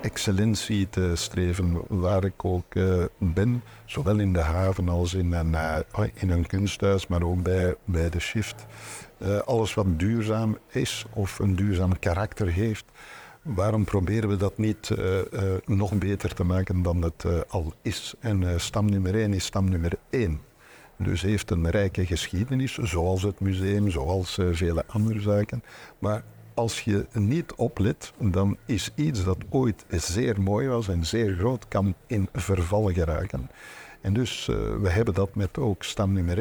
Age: 60-79